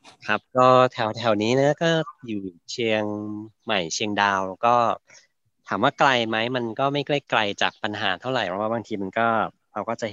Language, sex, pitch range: Thai, male, 95-115 Hz